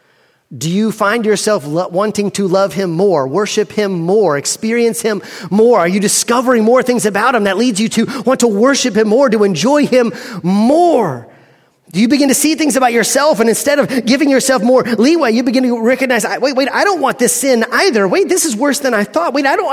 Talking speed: 220 wpm